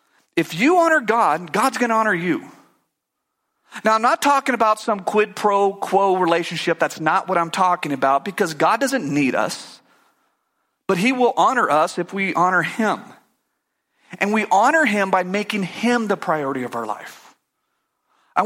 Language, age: English, 40-59